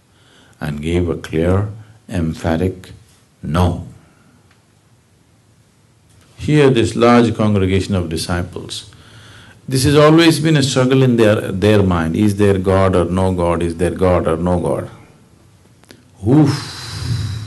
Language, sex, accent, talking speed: English, male, Indian, 120 wpm